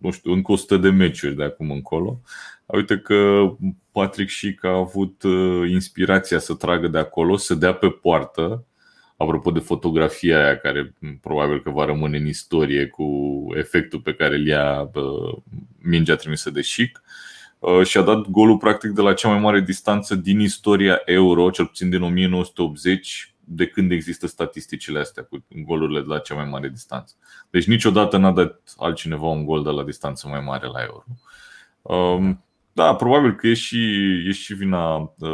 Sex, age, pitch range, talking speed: male, 30-49, 80-100 Hz, 165 wpm